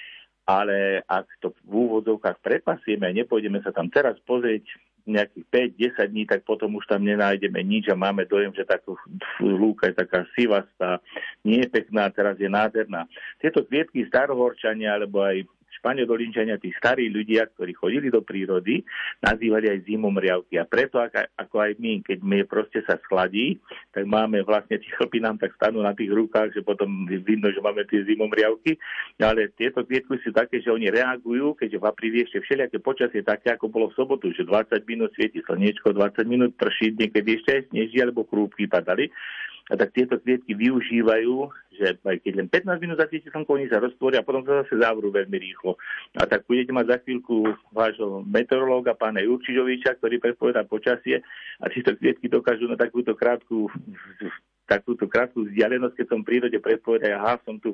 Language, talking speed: Slovak, 175 wpm